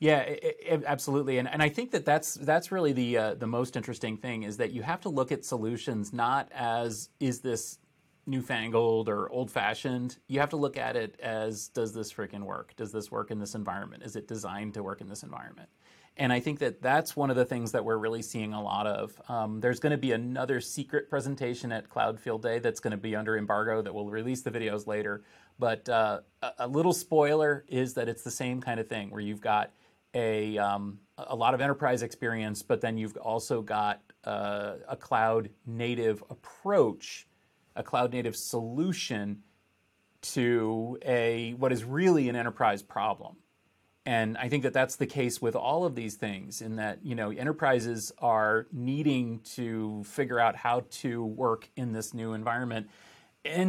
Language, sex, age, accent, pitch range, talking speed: English, male, 30-49, American, 110-135 Hz, 195 wpm